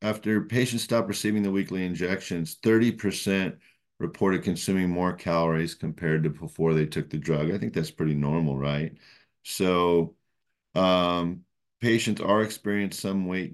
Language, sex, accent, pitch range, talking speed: English, male, American, 80-95 Hz, 140 wpm